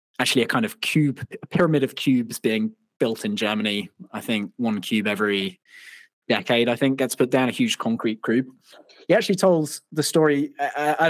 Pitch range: 115-150 Hz